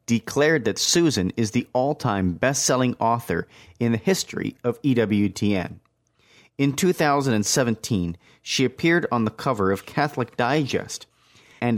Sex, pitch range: male, 105-140 Hz